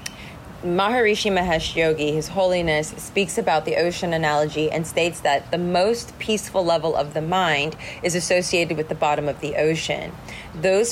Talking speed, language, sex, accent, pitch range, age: 160 wpm, English, female, American, 155-180 Hz, 30-49